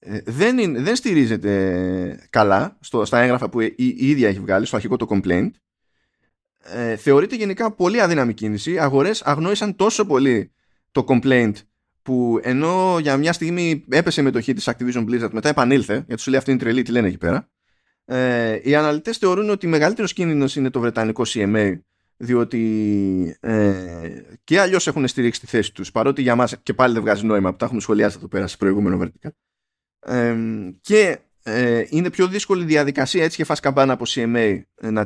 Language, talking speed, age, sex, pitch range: Greek, 170 wpm, 20-39, male, 105-155 Hz